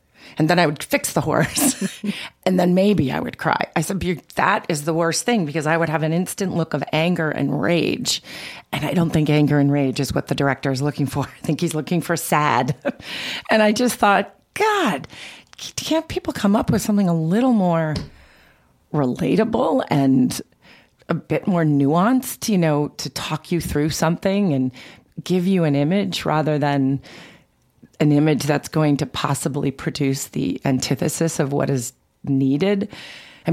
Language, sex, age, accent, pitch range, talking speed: English, female, 40-59, American, 145-180 Hz, 175 wpm